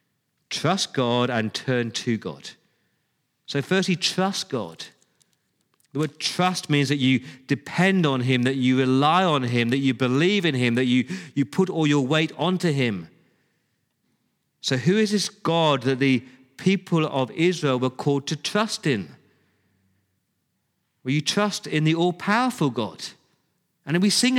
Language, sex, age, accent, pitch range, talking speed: English, male, 40-59, British, 135-180 Hz, 155 wpm